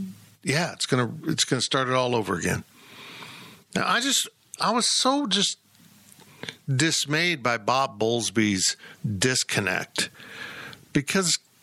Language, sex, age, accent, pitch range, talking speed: English, male, 50-69, American, 115-155 Hz, 120 wpm